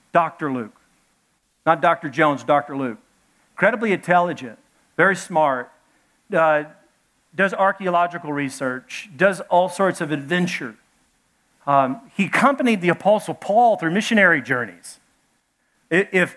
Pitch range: 145-200 Hz